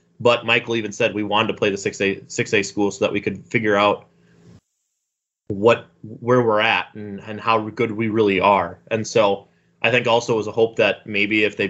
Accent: American